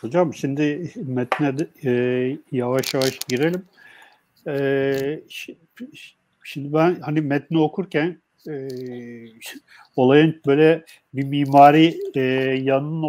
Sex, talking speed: male, 75 wpm